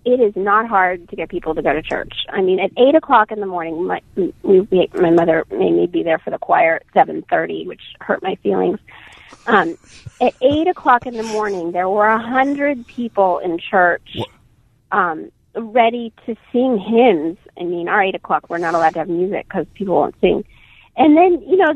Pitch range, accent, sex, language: 190-270 Hz, American, female, English